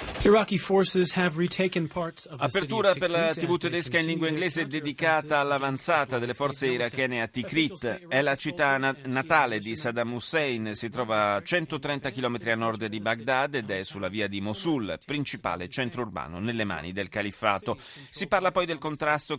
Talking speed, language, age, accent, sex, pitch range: 150 wpm, Italian, 40-59, native, male, 110-145 Hz